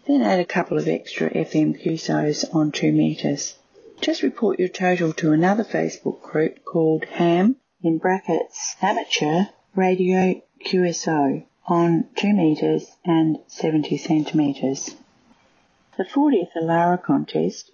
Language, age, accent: English, 30-49, Australian